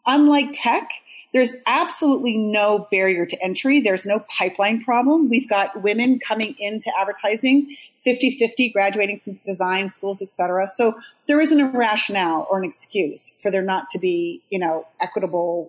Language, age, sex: English, 40-59, female